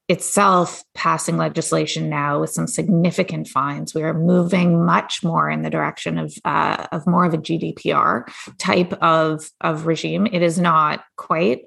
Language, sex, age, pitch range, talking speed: English, female, 20-39, 160-185 Hz, 160 wpm